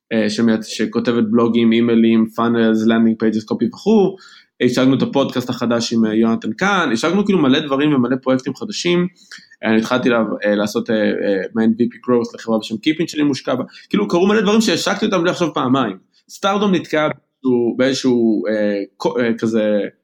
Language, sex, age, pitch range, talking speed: Hebrew, male, 20-39, 115-150 Hz, 145 wpm